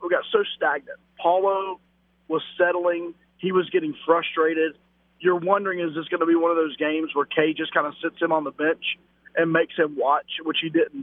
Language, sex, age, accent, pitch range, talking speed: English, male, 40-59, American, 165-230 Hz, 210 wpm